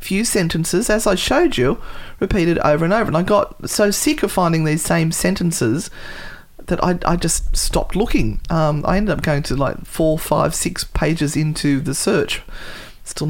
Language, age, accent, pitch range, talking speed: English, 40-59, Australian, 145-185 Hz, 185 wpm